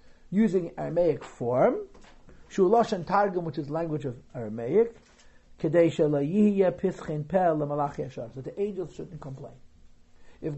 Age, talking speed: 60-79, 125 wpm